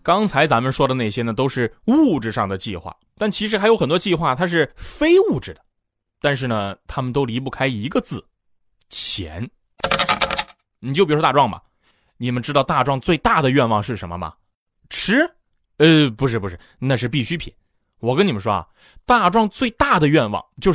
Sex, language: male, Chinese